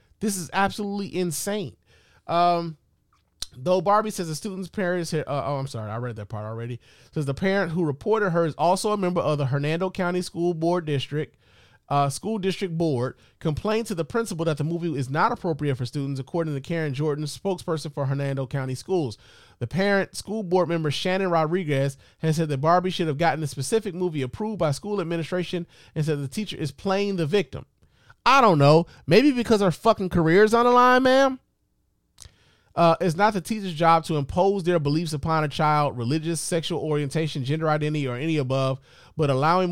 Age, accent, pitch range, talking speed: 30-49, American, 140-185 Hz, 190 wpm